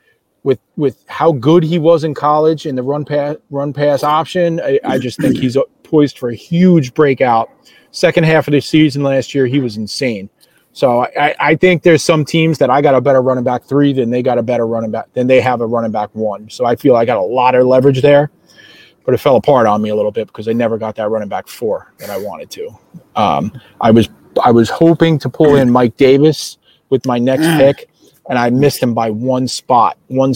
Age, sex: 30-49, male